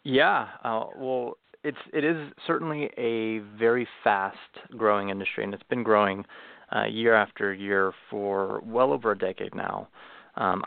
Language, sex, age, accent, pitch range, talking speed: English, male, 30-49, American, 100-115 Hz, 145 wpm